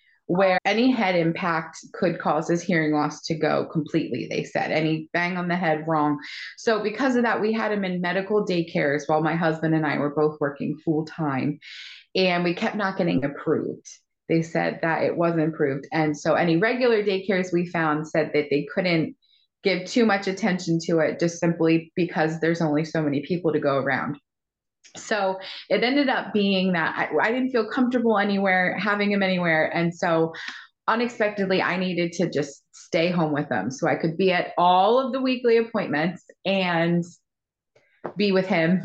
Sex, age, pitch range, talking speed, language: female, 30-49, 155-190 Hz, 185 wpm, English